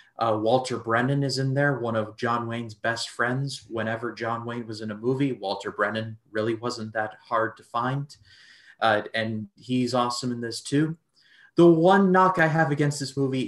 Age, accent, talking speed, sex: 30-49, American, 185 wpm, male